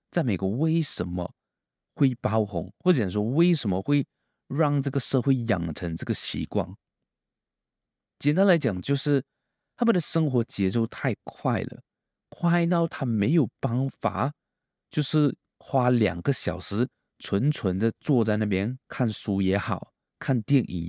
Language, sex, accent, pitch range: Chinese, male, native, 105-160 Hz